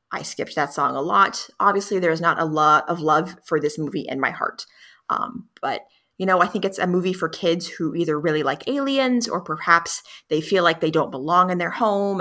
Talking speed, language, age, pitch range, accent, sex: 230 wpm, English, 30-49, 160-200 Hz, American, female